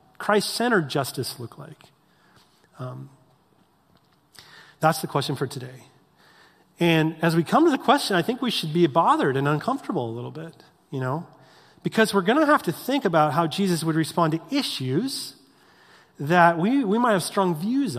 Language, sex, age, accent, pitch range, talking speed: English, male, 30-49, American, 160-235 Hz, 170 wpm